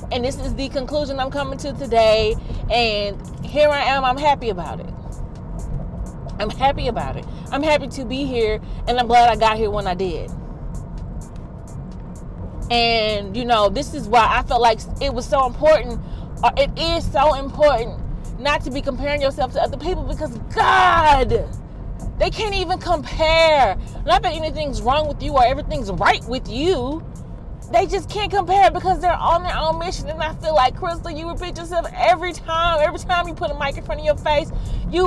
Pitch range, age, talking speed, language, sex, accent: 275-350 Hz, 30-49, 185 wpm, English, female, American